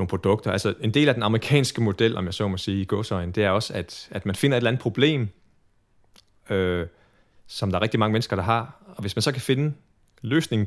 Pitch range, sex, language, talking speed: 100-120 Hz, male, Danish, 240 wpm